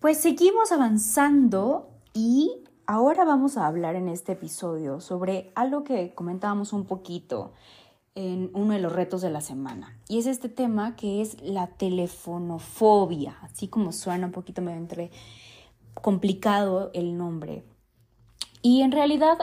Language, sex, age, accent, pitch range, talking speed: Spanish, female, 20-39, Mexican, 180-250 Hz, 140 wpm